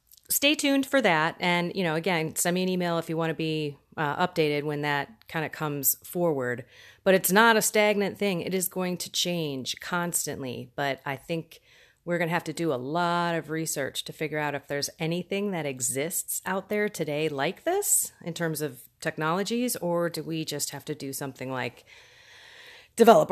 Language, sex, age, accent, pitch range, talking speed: English, female, 30-49, American, 150-195 Hz, 200 wpm